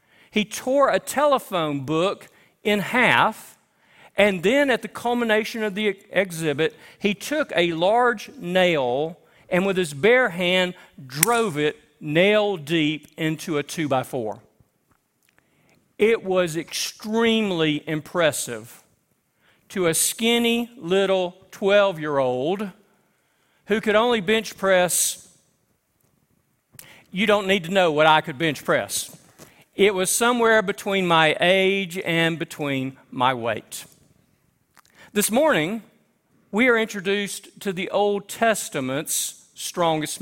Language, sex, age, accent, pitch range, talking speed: English, male, 40-59, American, 160-210 Hz, 115 wpm